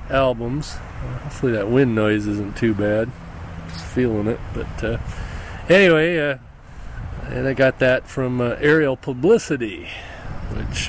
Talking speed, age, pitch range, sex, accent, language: 130 wpm, 40-59, 110-140 Hz, male, American, English